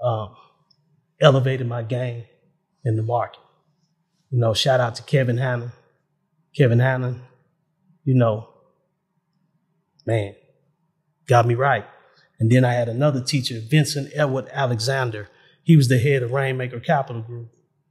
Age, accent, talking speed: 30-49, American, 130 wpm